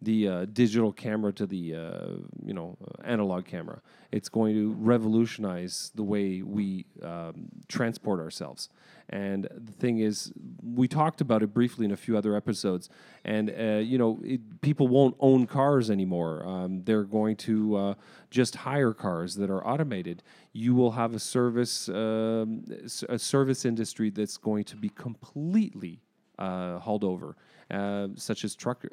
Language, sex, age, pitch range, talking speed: English, male, 40-59, 100-125 Hz, 160 wpm